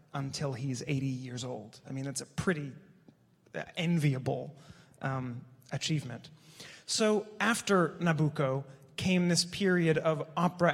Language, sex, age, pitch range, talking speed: English, male, 30-49, 135-155 Hz, 115 wpm